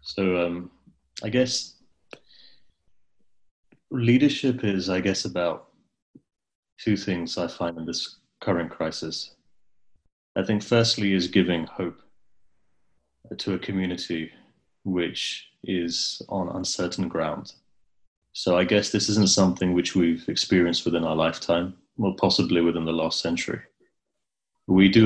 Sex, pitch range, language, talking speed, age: male, 85-100 Hz, English, 120 wpm, 30-49